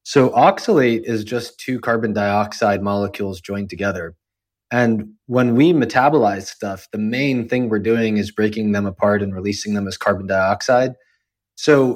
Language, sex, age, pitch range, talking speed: English, male, 20-39, 110-135 Hz, 155 wpm